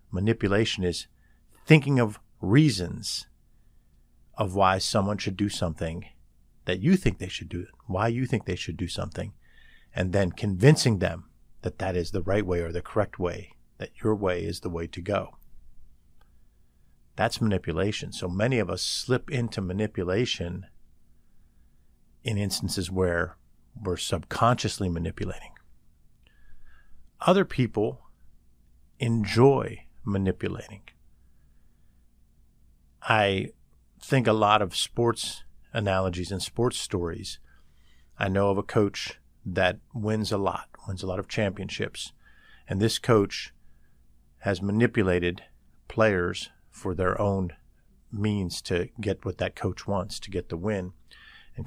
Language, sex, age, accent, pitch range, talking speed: English, male, 50-69, American, 85-110 Hz, 130 wpm